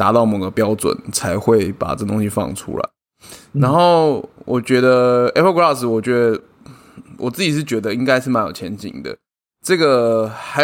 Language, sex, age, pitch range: Chinese, male, 20-39, 110-135 Hz